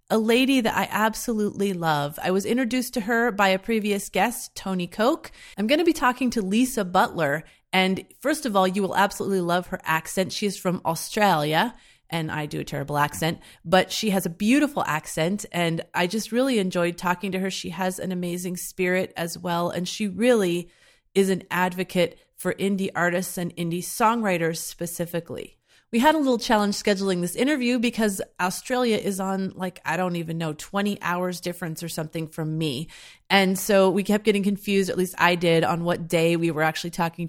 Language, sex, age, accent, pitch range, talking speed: English, female, 30-49, American, 175-215 Hz, 195 wpm